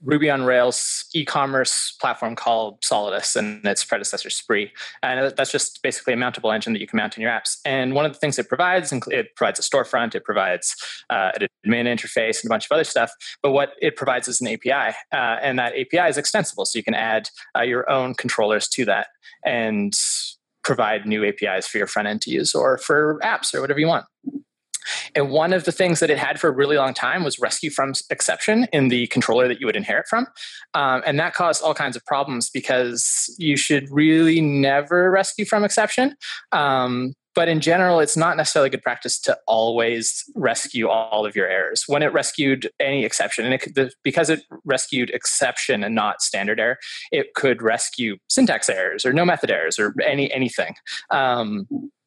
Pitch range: 125-170 Hz